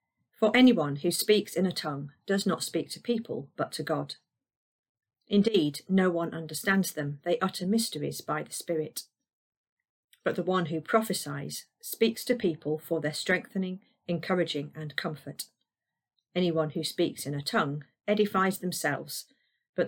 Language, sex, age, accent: English, female, 40-59, British